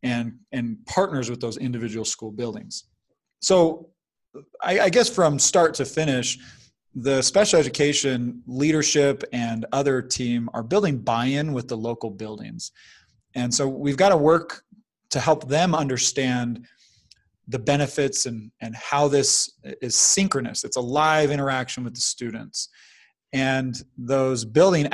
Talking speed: 140 wpm